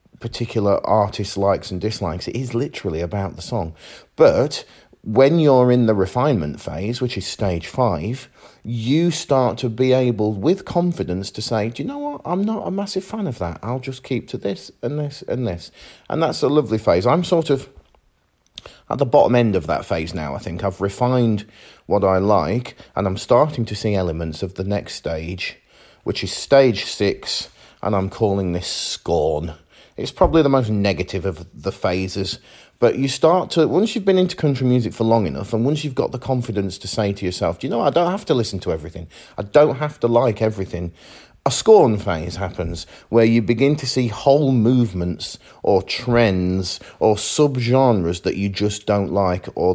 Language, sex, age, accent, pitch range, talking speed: English, male, 40-59, British, 95-130 Hz, 195 wpm